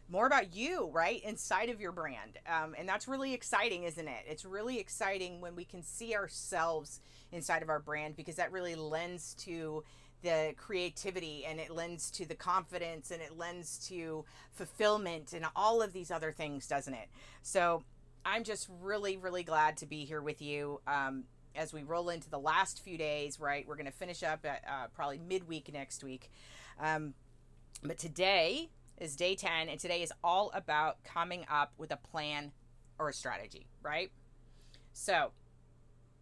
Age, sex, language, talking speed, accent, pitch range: 30-49, female, English, 170 wpm, American, 145-185 Hz